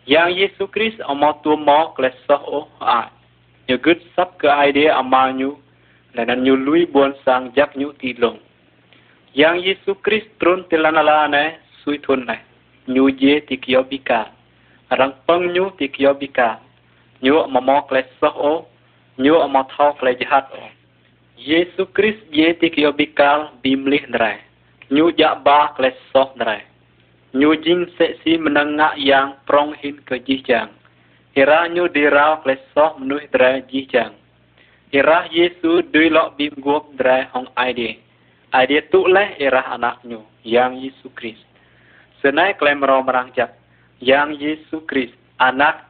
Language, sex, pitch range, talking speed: Vietnamese, male, 130-155 Hz, 125 wpm